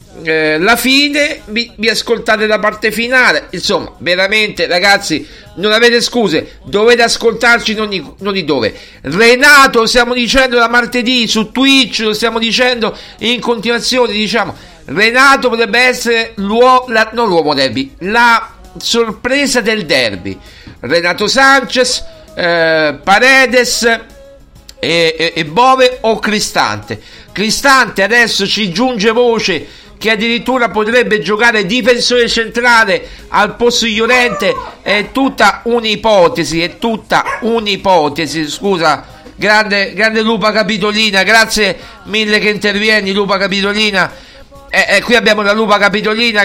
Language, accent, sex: Italian, native, male